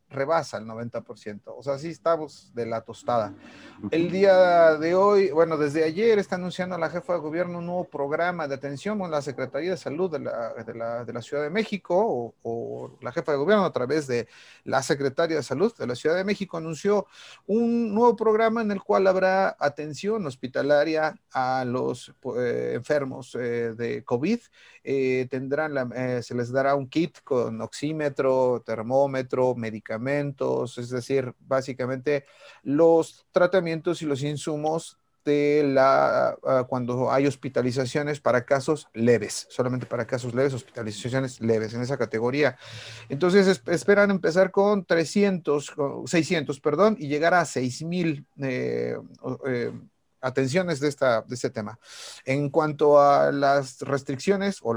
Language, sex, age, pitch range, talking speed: Spanish, male, 40-59, 125-170 Hz, 155 wpm